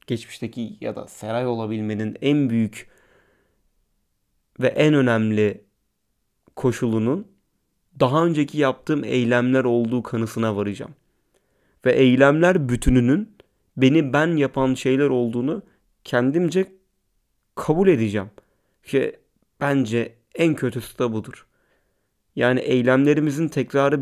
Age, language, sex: 30-49, Turkish, male